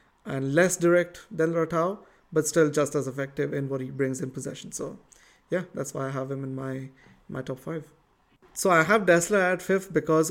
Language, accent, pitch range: English, Indian, 145-160 Hz